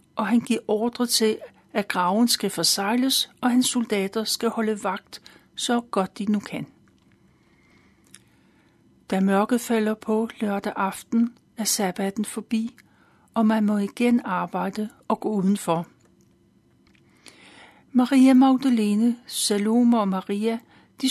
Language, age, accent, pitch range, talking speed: Danish, 60-79, native, 195-235 Hz, 120 wpm